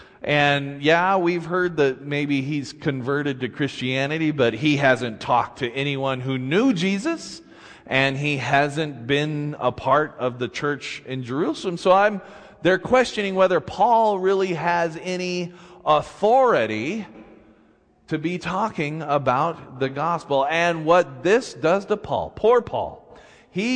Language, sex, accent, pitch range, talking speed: English, male, American, 130-185 Hz, 140 wpm